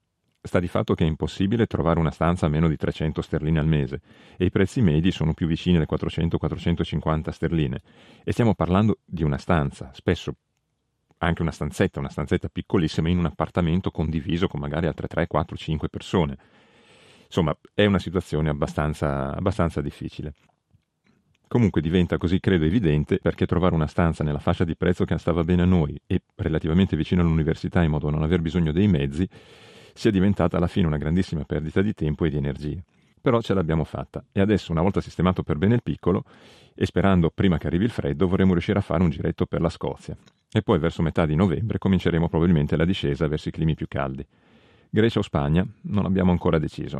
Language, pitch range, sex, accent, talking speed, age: Italian, 80-95 Hz, male, native, 190 wpm, 40-59